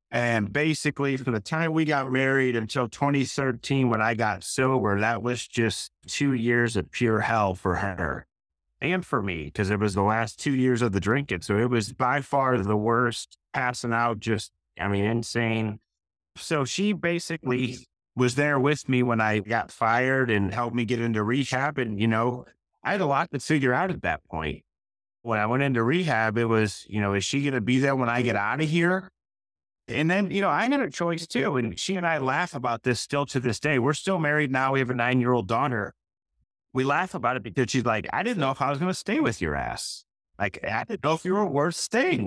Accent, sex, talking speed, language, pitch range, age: American, male, 225 wpm, English, 110-145 Hz, 30-49